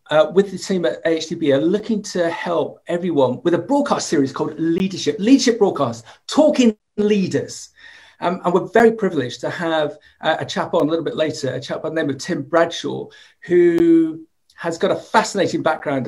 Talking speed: 185 wpm